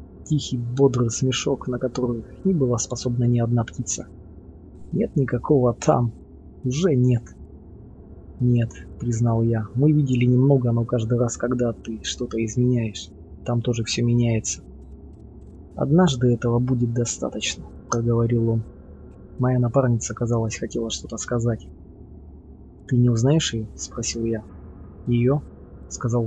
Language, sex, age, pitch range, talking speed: Russian, male, 20-39, 100-125 Hz, 120 wpm